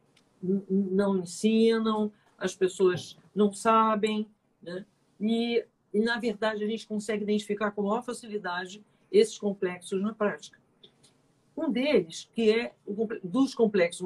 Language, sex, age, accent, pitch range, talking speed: Portuguese, female, 50-69, Brazilian, 185-225 Hz, 115 wpm